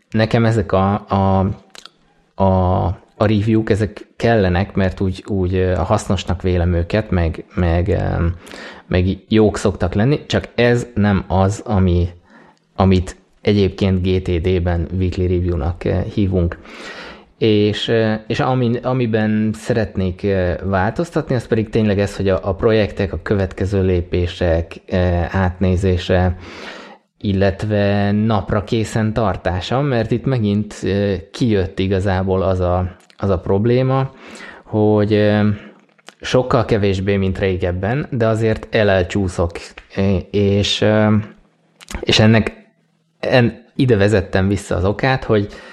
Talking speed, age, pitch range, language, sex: 110 wpm, 20-39, 95-110 Hz, Hungarian, male